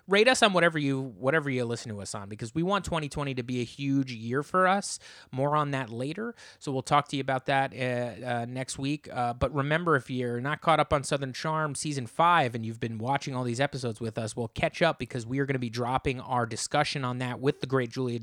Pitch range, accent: 125-150 Hz, American